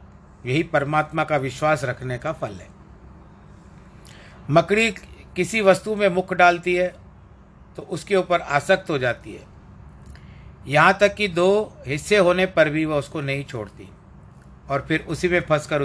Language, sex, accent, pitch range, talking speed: Hindi, male, native, 100-155 Hz, 150 wpm